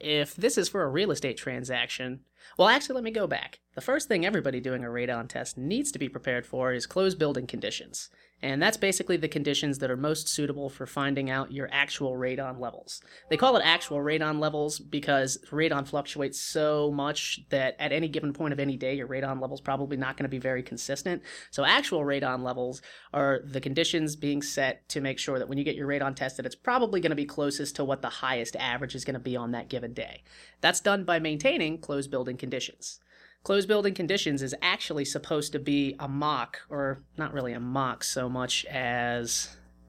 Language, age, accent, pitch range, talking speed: English, 30-49, American, 135-155 Hz, 210 wpm